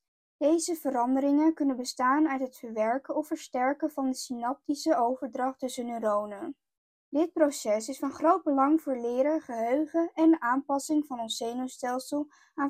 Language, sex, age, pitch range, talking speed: Dutch, female, 20-39, 250-310 Hz, 145 wpm